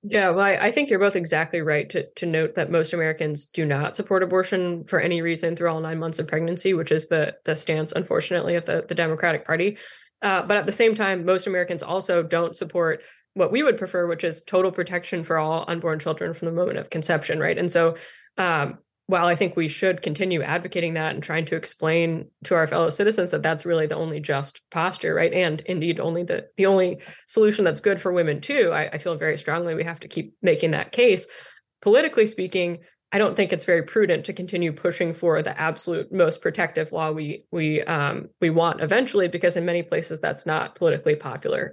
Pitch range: 160-190 Hz